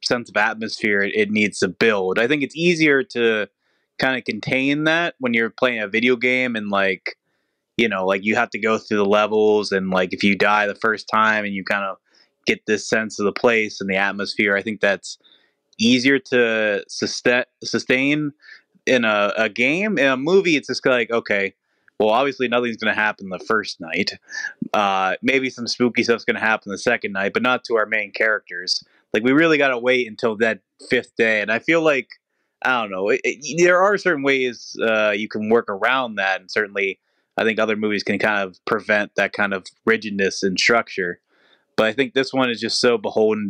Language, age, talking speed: English, 20-39, 205 wpm